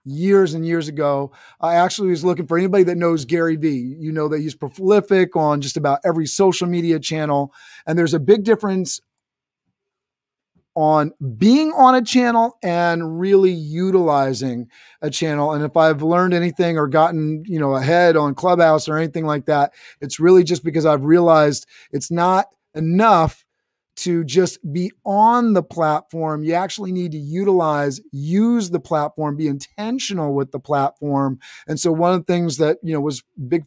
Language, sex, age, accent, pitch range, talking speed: English, male, 30-49, American, 150-180 Hz, 170 wpm